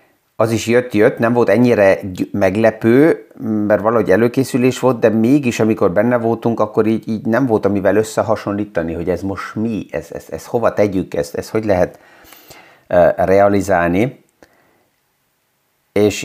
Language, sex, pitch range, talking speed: Hungarian, male, 90-110 Hz, 130 wpm